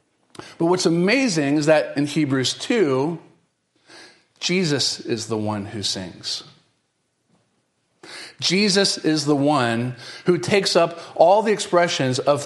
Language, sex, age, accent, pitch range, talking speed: English, male, 40-59, American, 145-190 Hz, 120 wpm